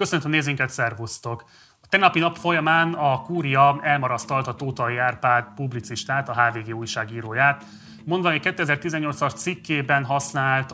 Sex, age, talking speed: male, 30-49, 125 wpm